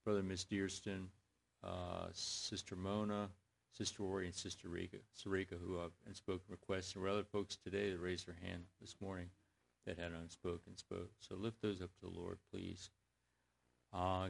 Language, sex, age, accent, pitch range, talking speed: English, male, 50-69, American, 90-100 Hz, 170 wpm